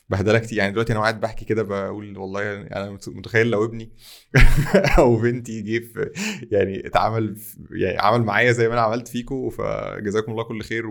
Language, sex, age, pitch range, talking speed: Arabic, male, 20-39, 100-115 Hz, 170 wpm